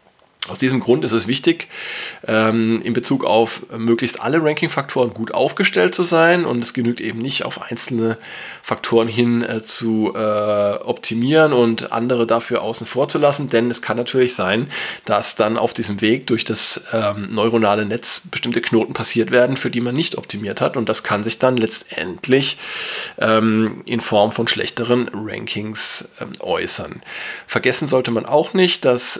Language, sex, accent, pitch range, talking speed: German, male, German, 110-130 Hz, 155 wpm